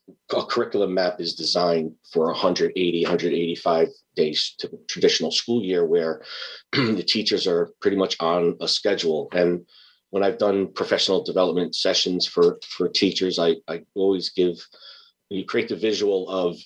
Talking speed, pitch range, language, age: 150 wpm, 90-105 Hz, English, 30-49